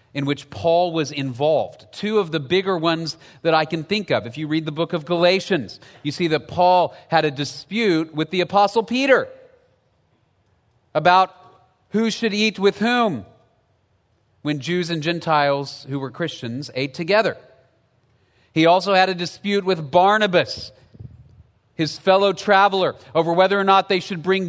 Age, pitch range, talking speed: 40-59, 140-200 Hz, 160 wpm